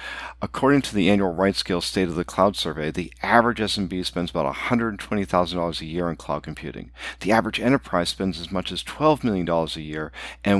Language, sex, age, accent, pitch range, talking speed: English, male, 50-69, American, 85-110 Hz, 185 wpm